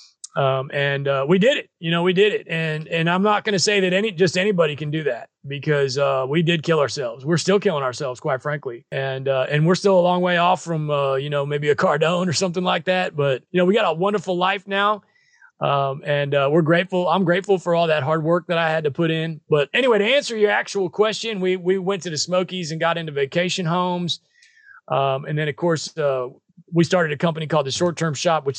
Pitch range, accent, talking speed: 145-185 Hz, American, 250 wpm